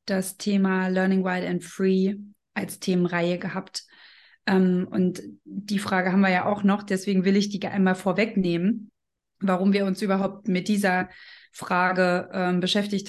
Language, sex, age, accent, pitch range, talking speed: German, female, 20-39, German, 185-200 Hz, 150 wpm